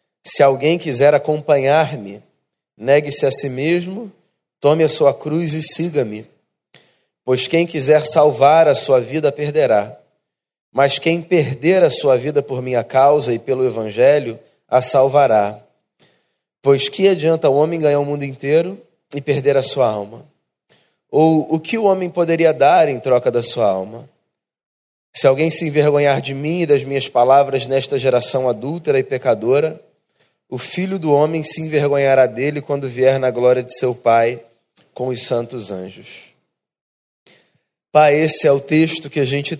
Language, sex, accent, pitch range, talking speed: Portuguese, male, Brazilian, 130-155 Hz, 155 wpm